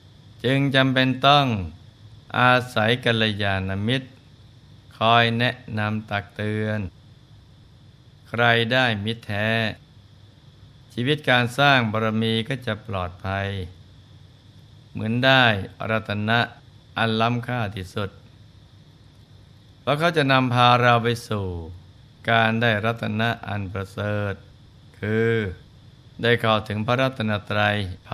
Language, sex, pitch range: Thai, male, 110-125 Hz